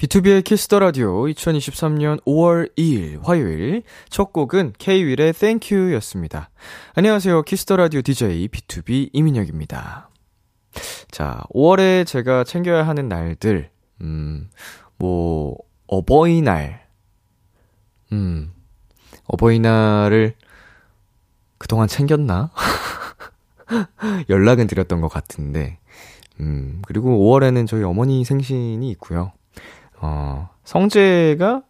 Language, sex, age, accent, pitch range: Korean, male, 20-39, native, 95-150 Hz